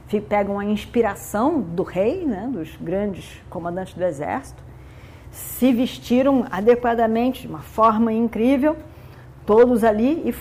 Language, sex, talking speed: Portuguese, female, 120 wpm